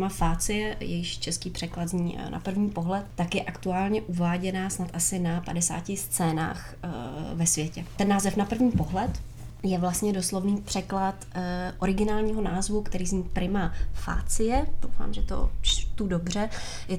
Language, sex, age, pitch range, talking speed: Czech, female, 20-39, 170-195 Hz, 140 wpm